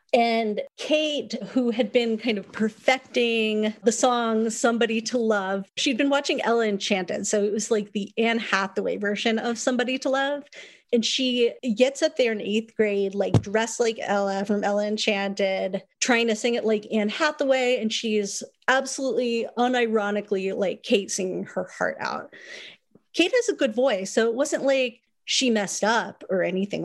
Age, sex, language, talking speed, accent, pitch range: 30-49, female, English, 170 wpm, American, 205-250 Hz